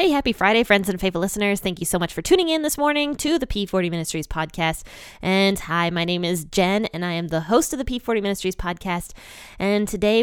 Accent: American